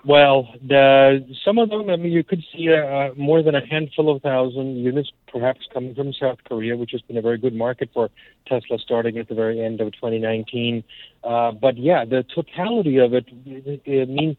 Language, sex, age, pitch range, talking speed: English, male, 50-69, 120-150 Hz, 195 wpm